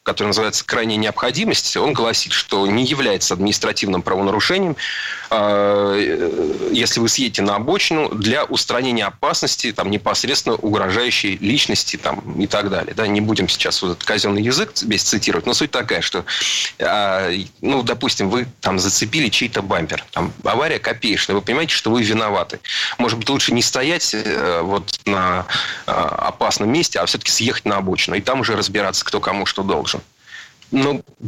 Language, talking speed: Russian, 150 wpm